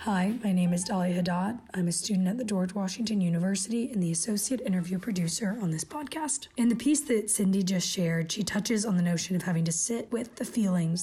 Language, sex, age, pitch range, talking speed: English, female, 30-49, 185-230 Hz, 225 wpm